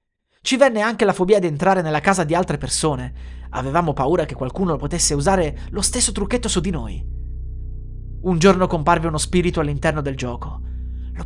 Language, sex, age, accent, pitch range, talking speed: Italian, male, 30-49, native, 140-215 Hz, 175 wpm